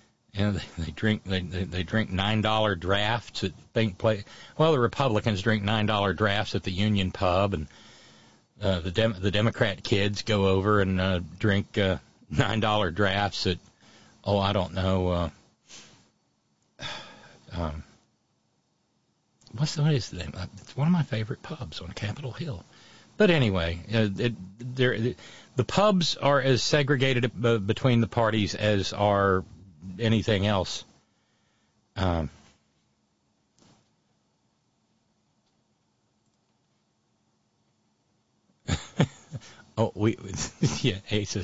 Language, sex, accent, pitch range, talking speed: English, male, American, 95-120 Hz, 120 wpm